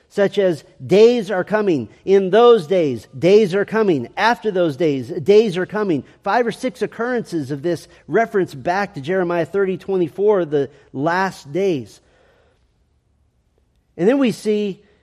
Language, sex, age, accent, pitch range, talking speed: English, male, 40-59, American, 170-220 Hz, 140 wpm